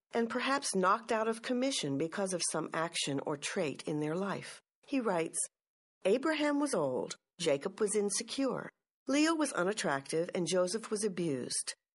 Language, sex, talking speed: English, female, 150 wpm